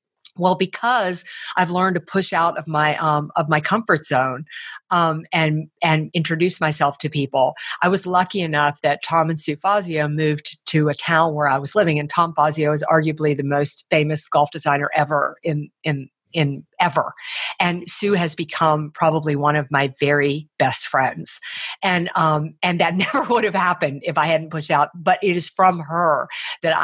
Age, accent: 50-69, American